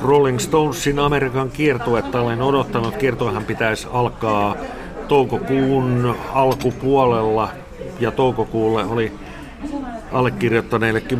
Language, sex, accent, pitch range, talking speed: Finnish, male, native, 110-125 Hz, 80 wpm